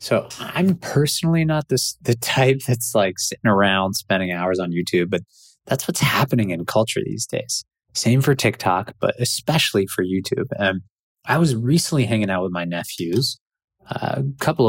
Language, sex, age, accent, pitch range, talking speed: English, male, 20-39, American, 95-125 Hz, 170 wpm